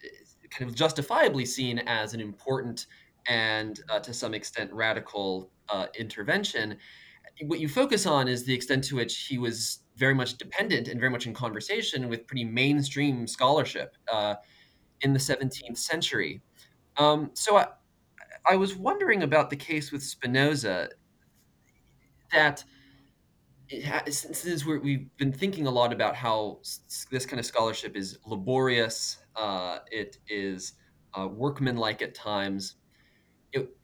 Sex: male